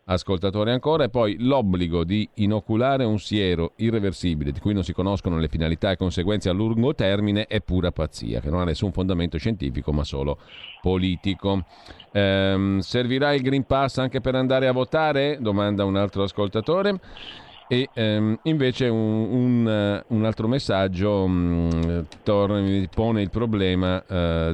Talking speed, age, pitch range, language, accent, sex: 150 wpm, 50-69, 85-110 Hz, Italian, native, male